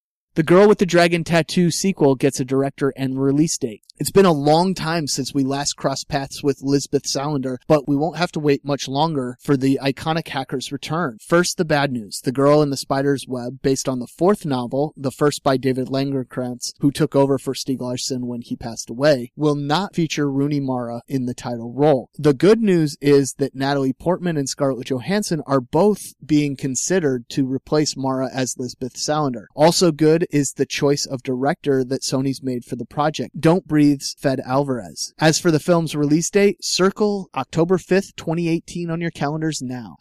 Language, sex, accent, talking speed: English, male, American, 195 wpm